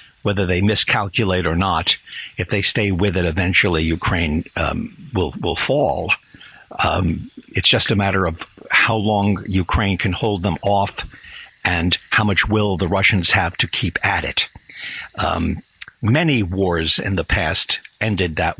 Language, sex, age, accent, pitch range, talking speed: English, male, 60-79, American, 95-110 Hz, 155 wpm